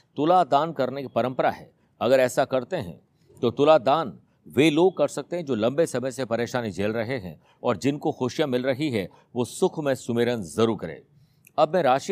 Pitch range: 110-145 Hz